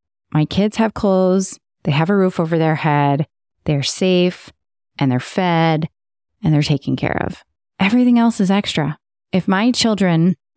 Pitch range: 155-195 Hz